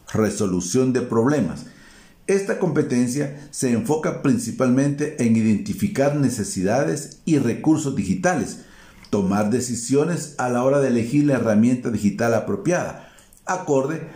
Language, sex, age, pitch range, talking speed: Spanish, male, 50-69, 110-155 Hz, 110 wpm